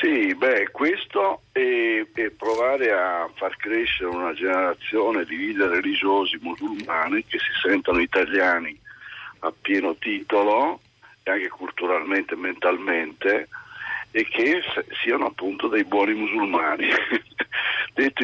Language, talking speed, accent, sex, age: Italian, 115 wpm, native, male, 60-79